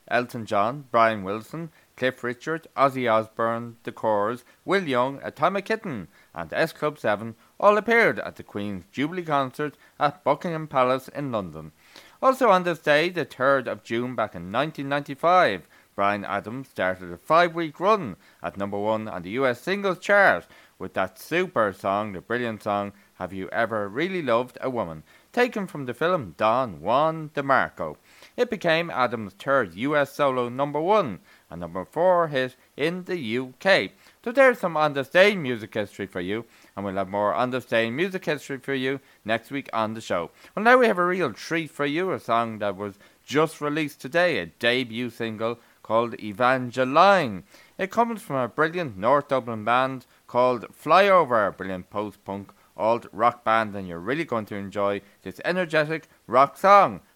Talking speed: 165 wpm